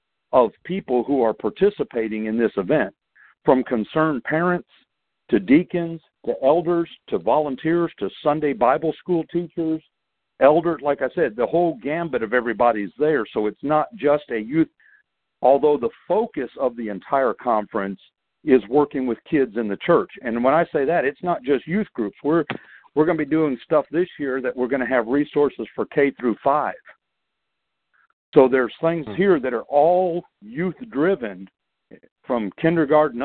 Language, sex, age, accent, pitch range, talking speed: English, male, 60-79, American, 125-160 Hz, 165 wpm